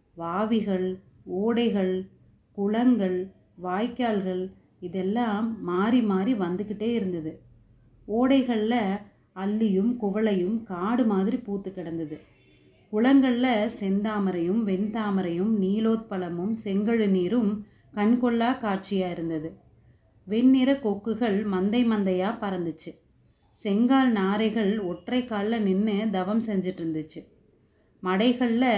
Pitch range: 185-225 Hz